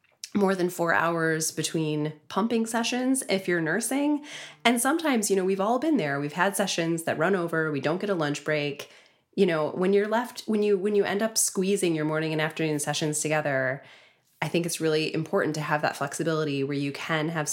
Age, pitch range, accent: 20-39, 145-190 Hz, American